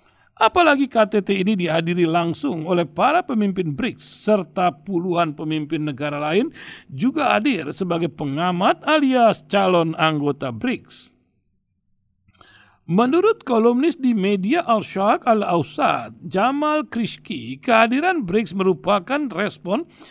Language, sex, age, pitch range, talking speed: Indonesian, male, 50-69, 155-220 Hz, 100 wpm